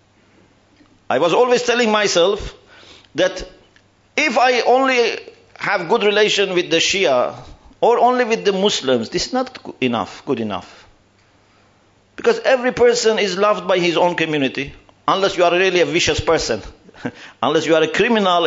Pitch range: 160-250 Hz